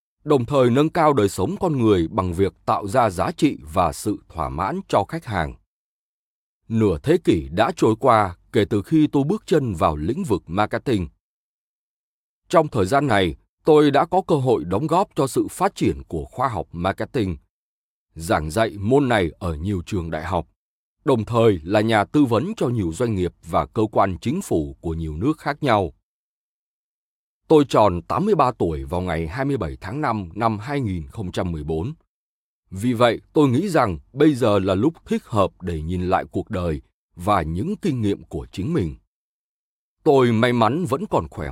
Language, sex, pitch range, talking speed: Vietnamese, male, 85-135 Hz, 180 wpm